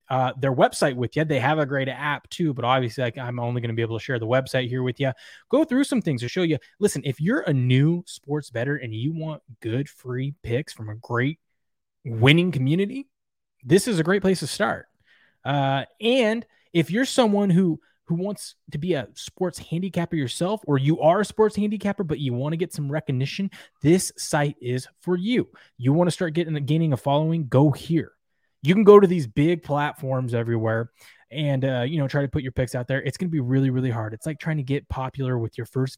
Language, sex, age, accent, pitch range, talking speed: English, male, 20-39, American, 130-175 Hz, 225 wpm